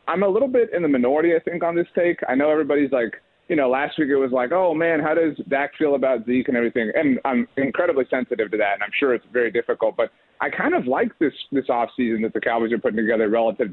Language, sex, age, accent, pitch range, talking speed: English, male, 30-49, American, 125-190 Hz, 260 wpm